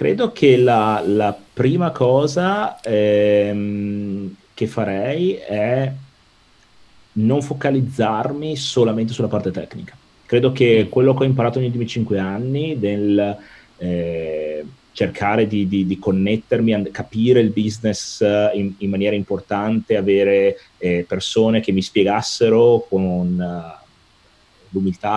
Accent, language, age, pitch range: native, Italian, 30-49, 95-120 Hz